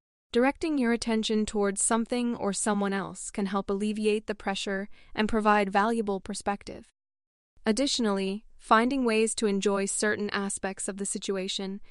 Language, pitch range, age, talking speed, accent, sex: English, 200-230 Hz, 20-39, 135 wpm, American, female